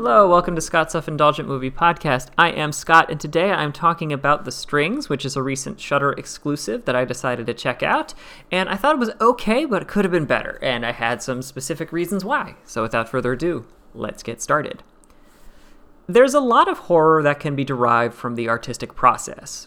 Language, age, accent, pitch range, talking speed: English, 30-49, American, 125-175 Hz, 205 wpm